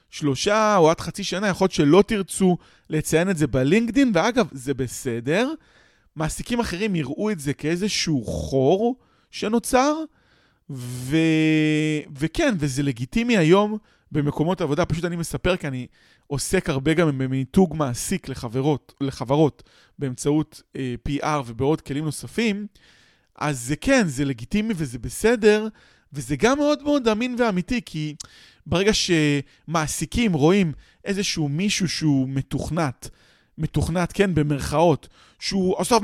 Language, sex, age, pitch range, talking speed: Hebrew, male, 20-39, 145-215 Hz, 125 wpm